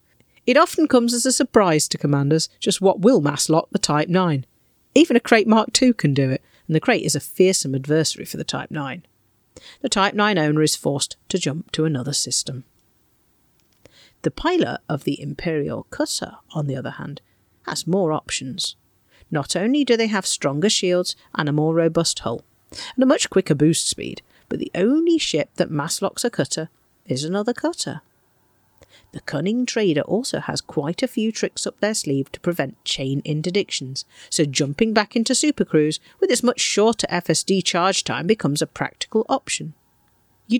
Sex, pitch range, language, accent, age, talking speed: female, 145-220 Hz, English, British, 40-59, 180 wpm